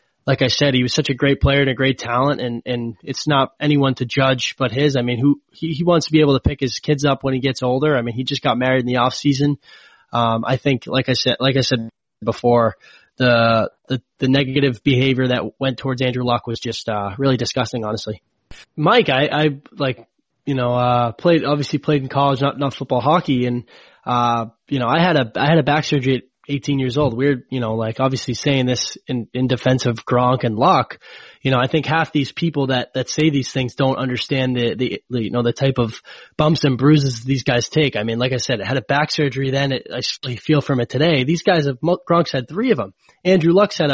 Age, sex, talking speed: 20-39, male, 245 wpm